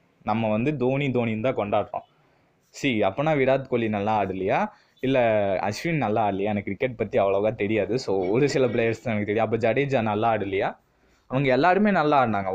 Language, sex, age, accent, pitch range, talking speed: Tamil, male, 20-39, native, 115-165 Hz, 170 wpm